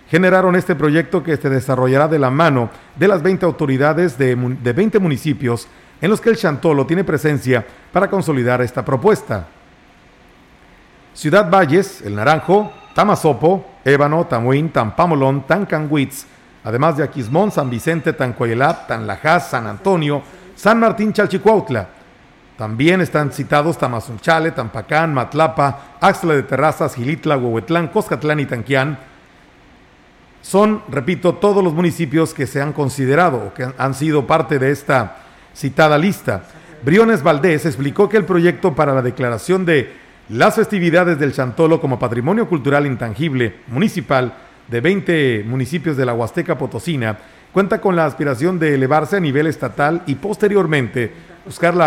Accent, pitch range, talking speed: Mexican, 130-175 Hz, 140 wpm